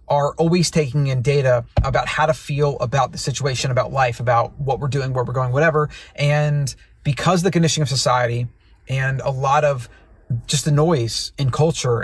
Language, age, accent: English, 30-49, American